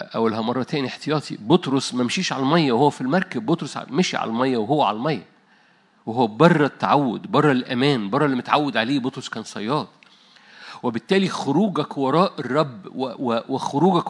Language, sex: Arabic, male